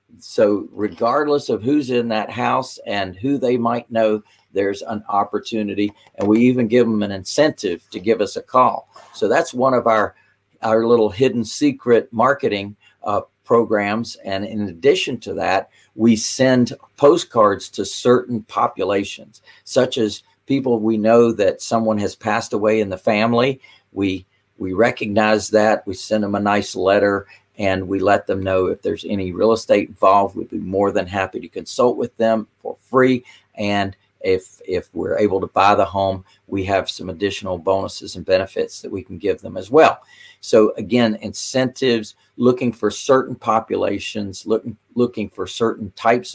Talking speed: 170 wpm